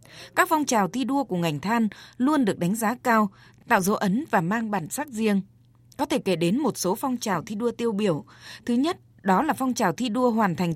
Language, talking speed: Vietnamese, 240 wpm